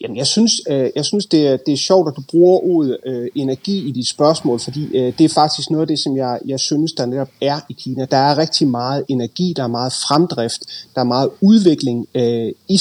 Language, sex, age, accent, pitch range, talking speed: Danish, male, 30-49, native, 125-165 Hz, 220 wpm